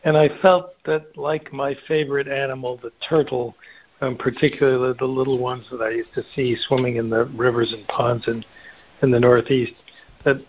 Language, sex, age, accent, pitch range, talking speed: English, male, 60-79, American, 115-140 Hz, 175 wpm